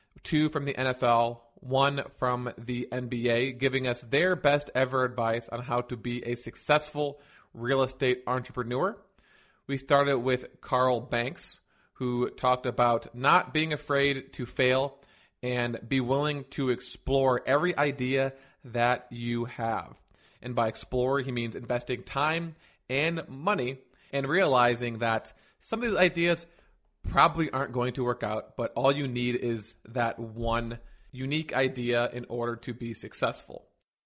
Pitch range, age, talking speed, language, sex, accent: 120-140 Hz, 30-49, 145 wpm, English, male, American